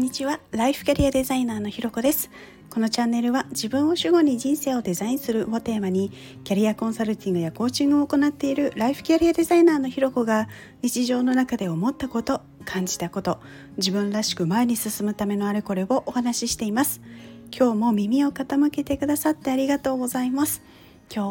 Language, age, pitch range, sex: Japanese, 40-59, 200-270 Hz, female